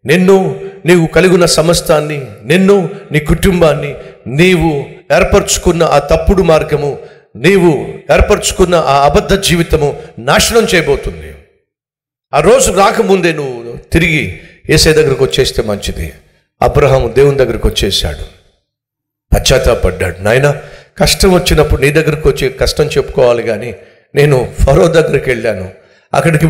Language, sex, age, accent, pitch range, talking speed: Telugu, male, 50-69, native, 120-170 Hz, 105 wpm